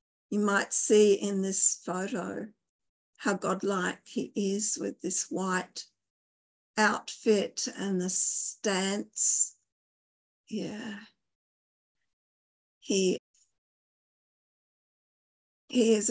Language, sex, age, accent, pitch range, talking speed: English, female, 50-69, Australian, 195-225 Hz, 80 wpm